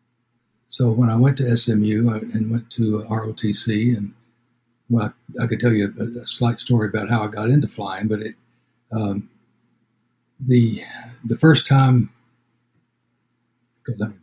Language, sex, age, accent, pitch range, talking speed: English, male, 60-79, American, 110-120 Hz, 145 wpm